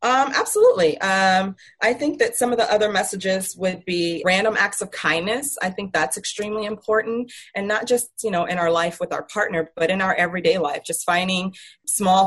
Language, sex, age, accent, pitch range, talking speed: English, female, 30-49, American, 165-205 Hz, 200 wpm